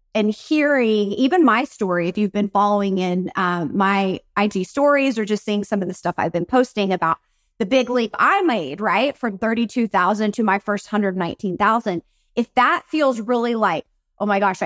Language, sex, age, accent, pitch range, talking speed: English, female, 30-49, American, 200-260 Hz, 185 wpm